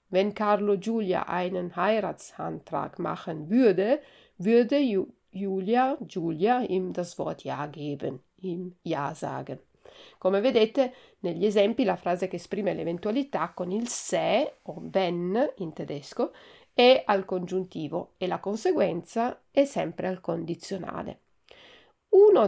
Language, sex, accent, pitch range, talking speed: Italian, female, native, 180-230 Hz, 125 wpm